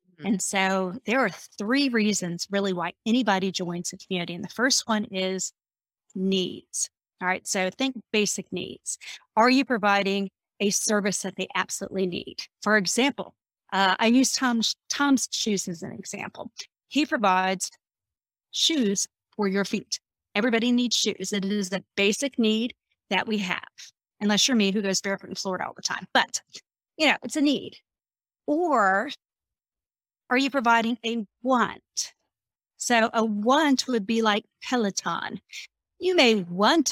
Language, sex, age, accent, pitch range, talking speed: English, female, 30-49, American, 190-240 Hz, 155 wpm